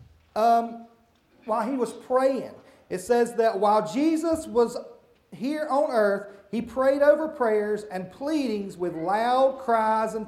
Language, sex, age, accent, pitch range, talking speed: English, male, 40-59, American, 205-275 Hz, 140 wpm